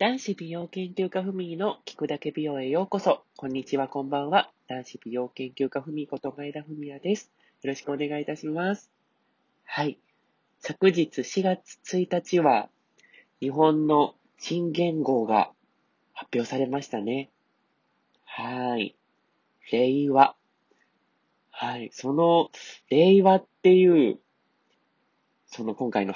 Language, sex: Japanese, male